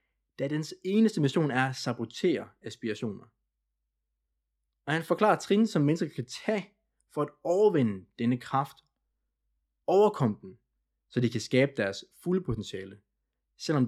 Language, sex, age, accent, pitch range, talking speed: Danish, male, 20-39, native, 110-170 Hz, 135 wpm